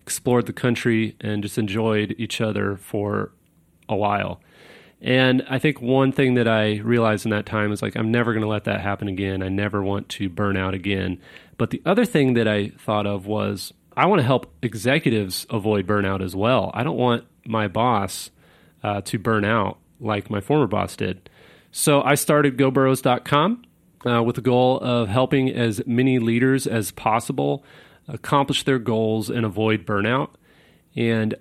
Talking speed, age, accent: 175 wpm, 30-49, American